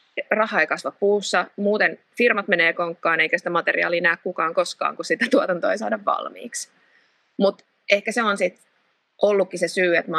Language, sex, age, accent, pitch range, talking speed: Finnish, female, 30-49, native, 165-200 Hz, 165 wpm